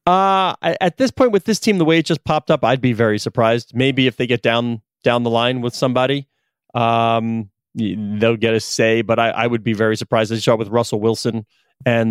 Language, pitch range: English, 115-145 Hz